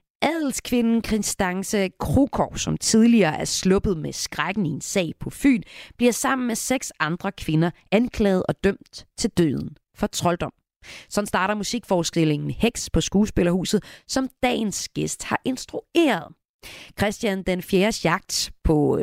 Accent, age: native, 30-49